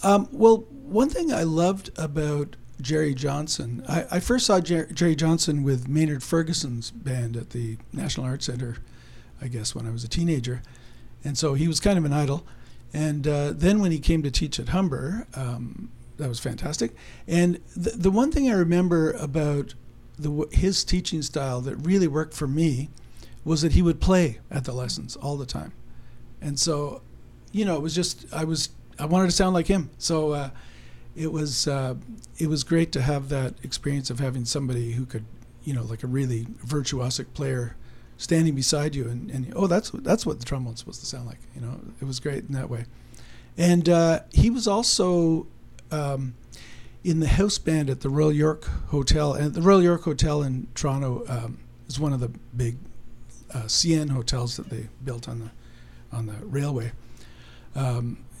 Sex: male